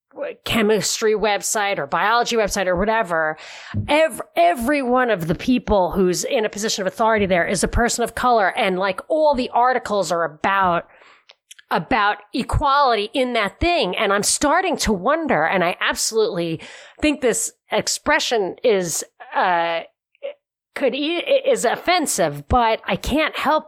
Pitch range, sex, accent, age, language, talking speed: 195-270 Hz, female, American, 40-59, English, 145 wpm